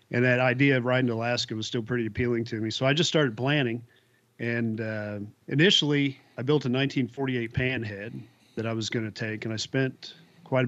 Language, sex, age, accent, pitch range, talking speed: English, male, 40-59, American, 115-130 Hz, 200 wpm